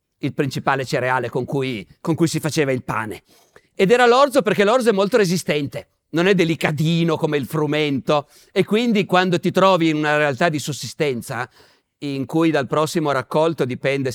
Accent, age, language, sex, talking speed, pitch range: native, 50-69, Italian, male, 175 wpm, 140-190 Hz